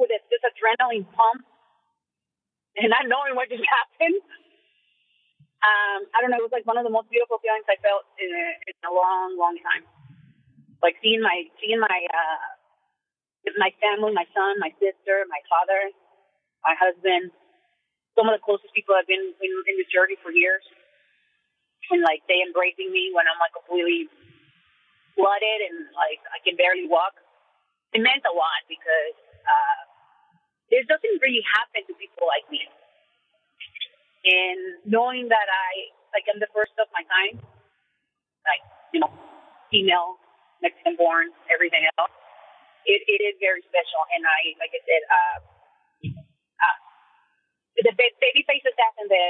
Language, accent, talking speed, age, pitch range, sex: English, American, 155 wpm, 30-49, 185-265 Hz, female